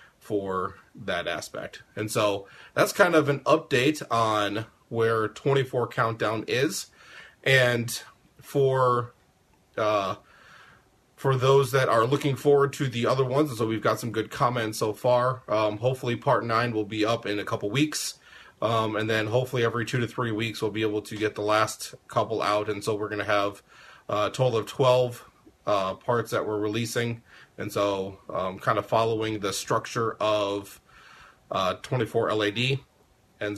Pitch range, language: 105-120 Hz, English